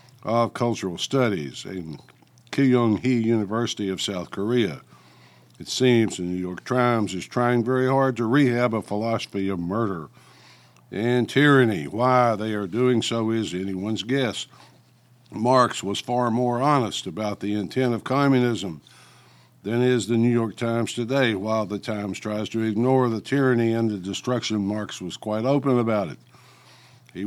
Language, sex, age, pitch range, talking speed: English, male, 60-79, 105-125 Hz, 155 wpm